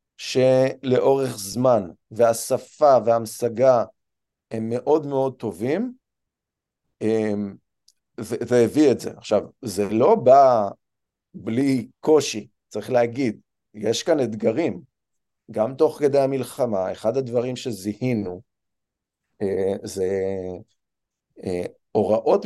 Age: 40-59